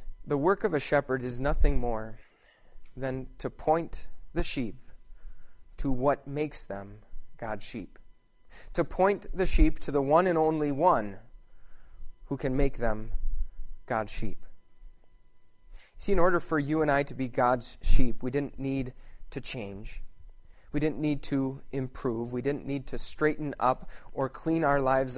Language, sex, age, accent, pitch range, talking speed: English, male, 30-49, American, 125-150 Hz, 155 wpm